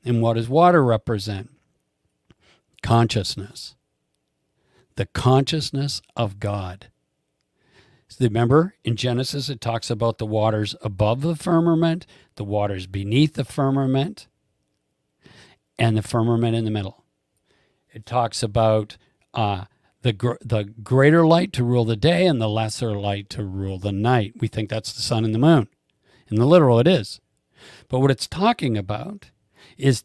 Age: 50-69